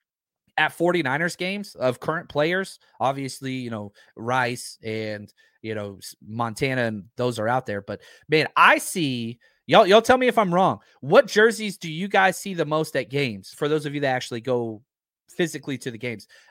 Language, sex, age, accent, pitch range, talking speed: English, male, 30-49, American, 115-170 Hz, 185 wpm